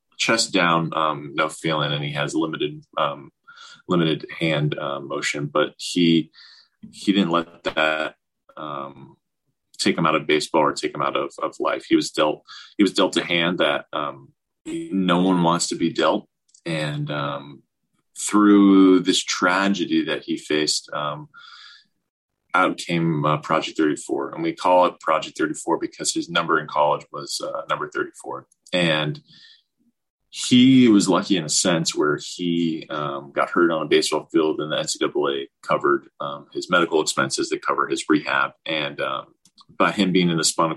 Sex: male